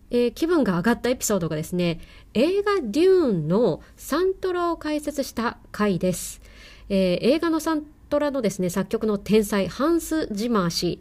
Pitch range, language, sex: 185-290 Hz, Japanese, female